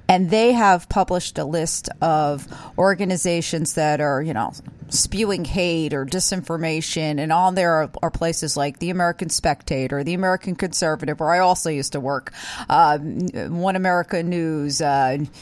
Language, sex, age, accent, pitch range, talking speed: English, female, 40-59, American, 150-195 Hz, 155 wpm